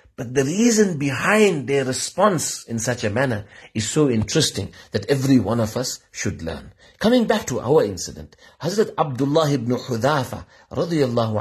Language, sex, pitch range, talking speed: English, male, 105-140 Hz, 160 wpm